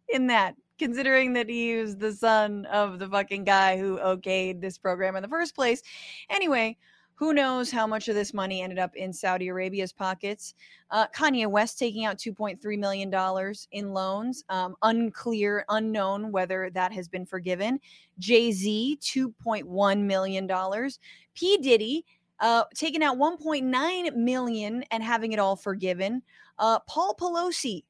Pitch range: 190-265 Hz